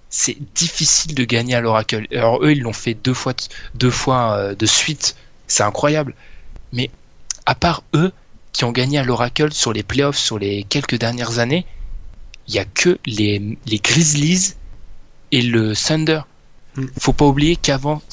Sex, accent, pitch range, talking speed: male, French, 115-140 Hz, 170 wpm